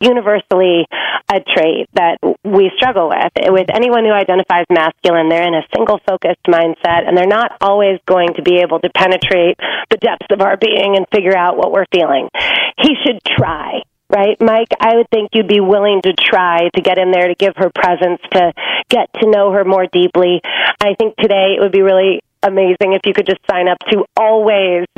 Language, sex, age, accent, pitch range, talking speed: English, female, 30-49, American, 185-225 Hz, 195 wpm